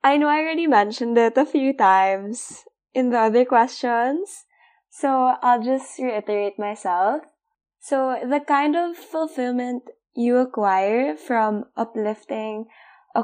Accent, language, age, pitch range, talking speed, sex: Filipino, English, 20-39, 200-280 Hz, 125 wpm, female